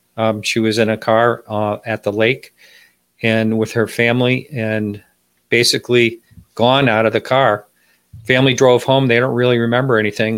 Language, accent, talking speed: English, American, 170 wpm